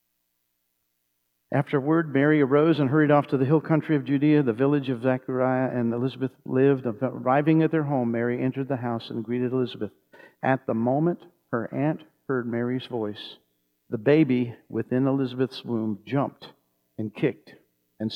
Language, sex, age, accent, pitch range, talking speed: English, male, 50-69, American, 110-175 Hz, 155 wpm